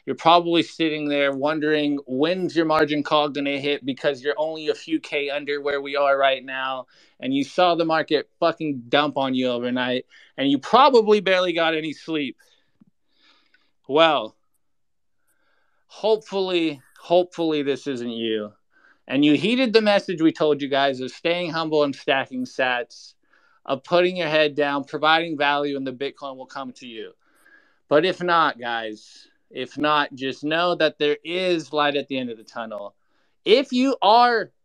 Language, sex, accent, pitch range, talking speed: English, male, American, 140-180 Hz, 170 wpm